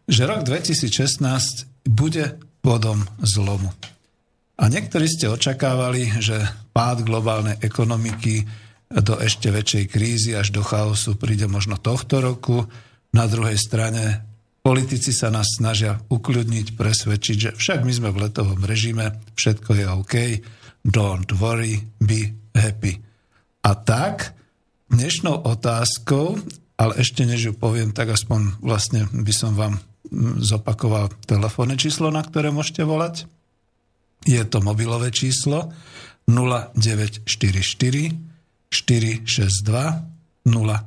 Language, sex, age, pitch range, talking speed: Slovak, male, 50-69, 110-130 Hz, 110 wpm